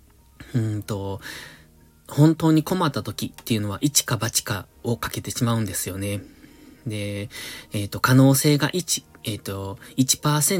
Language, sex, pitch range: Japanese, male, 105-145 Hz